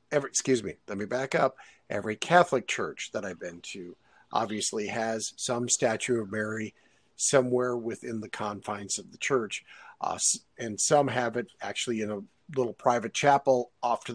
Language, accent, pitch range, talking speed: English, American, 125-150 Hz, 165 wpm